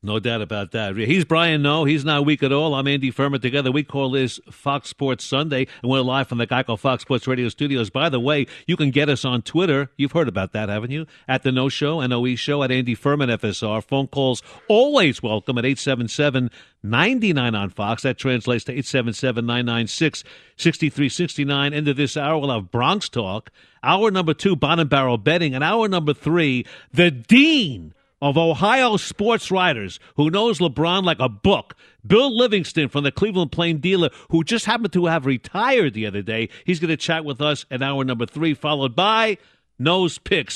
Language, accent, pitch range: English, American, 130-180 Hz